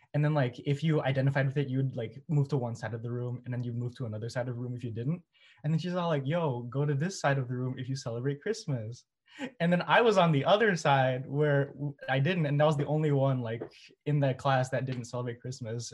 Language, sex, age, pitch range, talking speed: English, male, 20-39, 120-145 Hz, 270 wpm